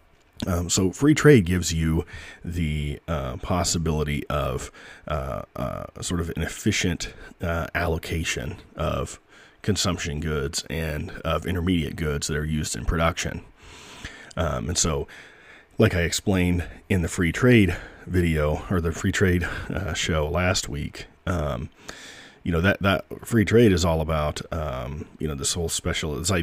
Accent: American